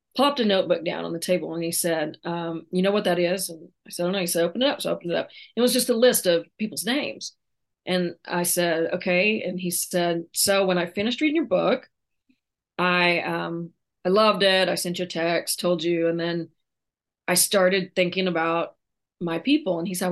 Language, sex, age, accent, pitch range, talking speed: English, female, 30-49, American, 175-195 Hz, 230 wpm